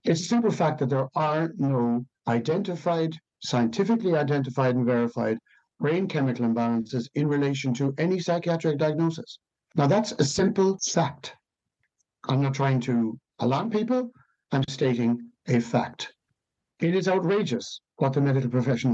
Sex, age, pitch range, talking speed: male, 60-79, 130-175 Hz, 140 wpm